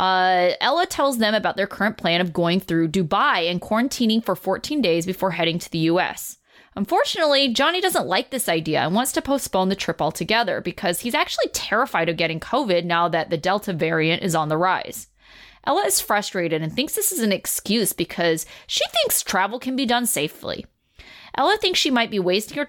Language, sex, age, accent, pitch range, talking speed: English, female, 20-39, American, 170-245 Hz, 200 wpm